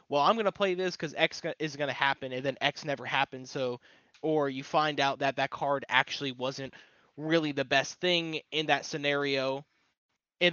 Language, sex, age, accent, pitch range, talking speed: English, male, 20-39, American, 130-155 Hz, 190 wpm